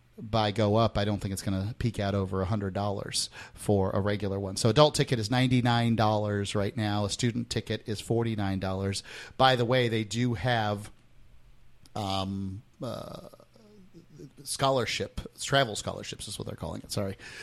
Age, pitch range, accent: 40-59, 100-125 Hz, American